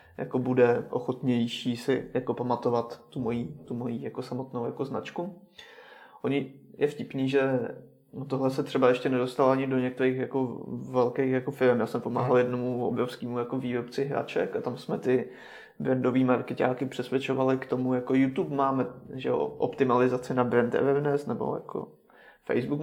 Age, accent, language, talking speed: 20-39, native, Czech, 150 wpm